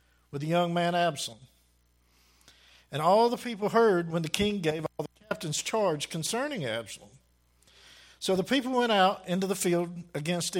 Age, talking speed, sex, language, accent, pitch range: 50-69, 165 wpm, male, English, American, 150-210 Hz